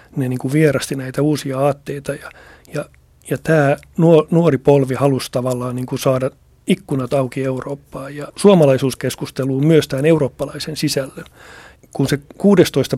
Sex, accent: male, native